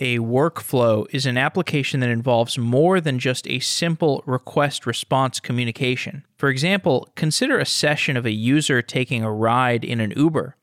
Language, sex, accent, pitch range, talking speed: English, male, American, 120-150 Hz, 160 wpm